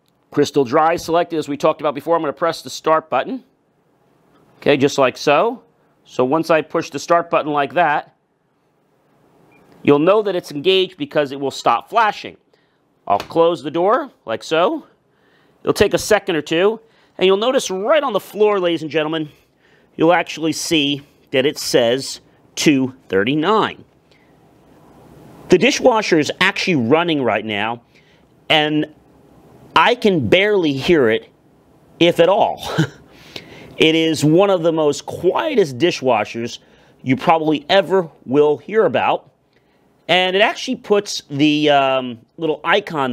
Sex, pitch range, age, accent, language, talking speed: male, 140-170 Hz, 40-59, American, English, 145 wpm